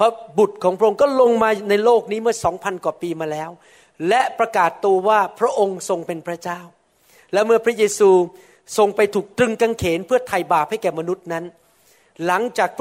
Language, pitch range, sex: Thai, 185-235 Hz, male